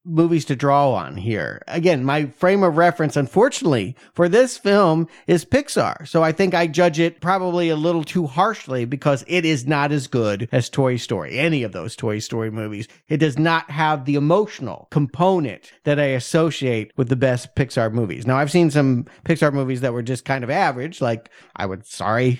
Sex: male